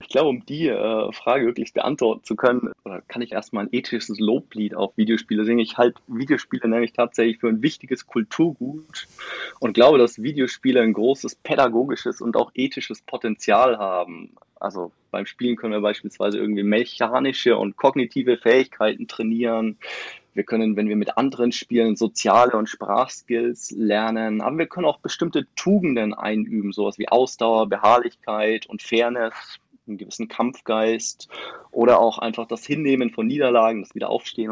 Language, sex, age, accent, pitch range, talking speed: German, male, 20-39, German, 110-130 Hz, 150 wpm